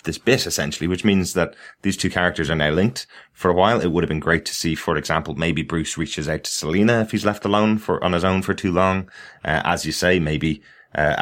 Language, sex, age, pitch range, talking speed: English, male, 20-39, 75-90 Hz, 250 wpm